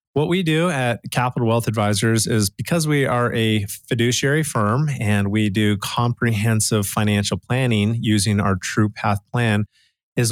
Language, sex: English, male